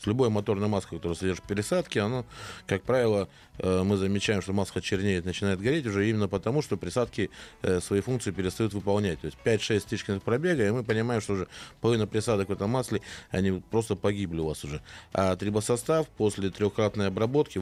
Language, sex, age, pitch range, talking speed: Russian, male, 20-39, 95-110 Hz, 175 wpm